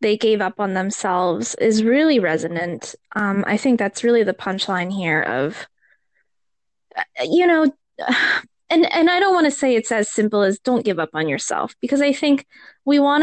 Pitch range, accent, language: 200-260 Hz, American, English